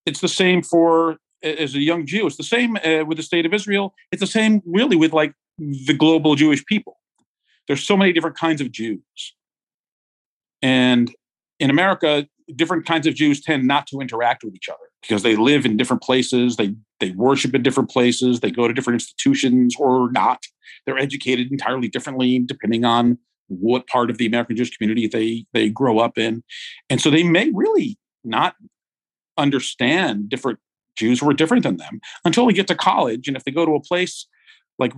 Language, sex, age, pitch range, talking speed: English, male, 50-69, 125-170 Hz, 190 wpm